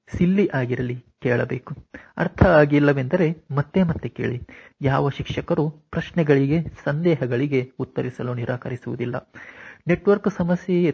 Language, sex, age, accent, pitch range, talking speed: Kannada, male, 30-49, native, 130-170 Hz, 90 wpm